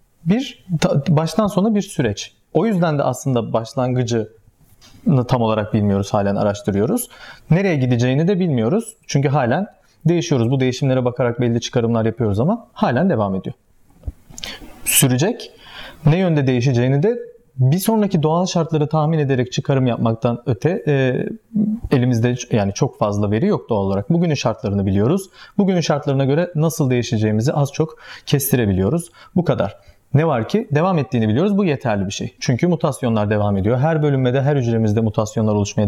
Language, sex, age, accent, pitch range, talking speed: Turkish, male, 40-59, native, 110-160 Hz, 145 wpm